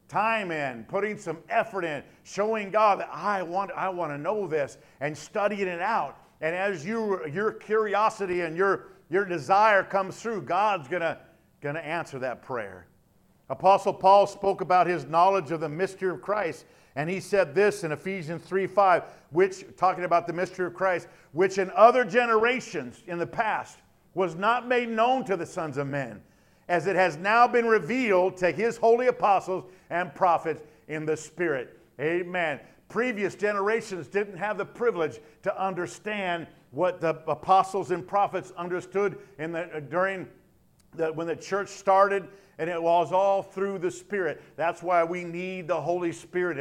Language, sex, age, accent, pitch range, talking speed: English, male, 50-69, American, 165-200 Hz, 170 wpm